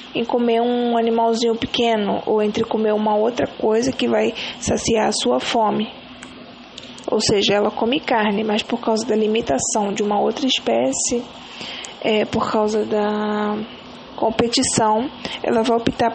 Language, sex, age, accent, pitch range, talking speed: English, female, 20-39, Brazilian, 210-240 Hz, 145 wpm